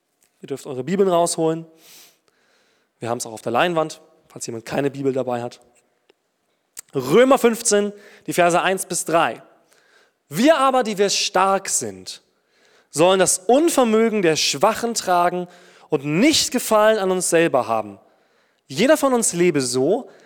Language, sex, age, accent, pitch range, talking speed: German, male, 20-39, German, 150-205 Hz, 145 wpm